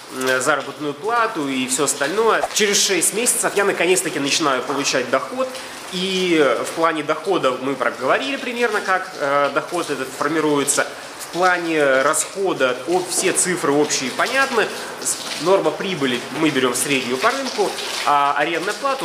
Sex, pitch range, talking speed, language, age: male, 145-210 Hz, 130 wpm, Russian, 20-39